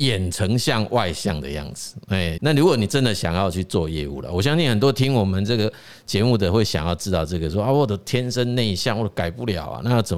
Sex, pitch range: male, 95-135 Hz